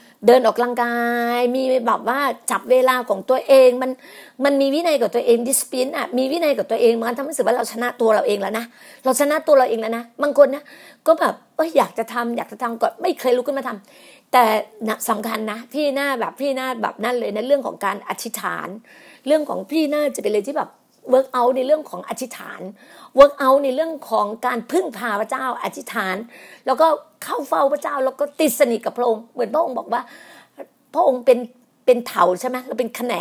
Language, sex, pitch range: Thai, female, 230-280 Hz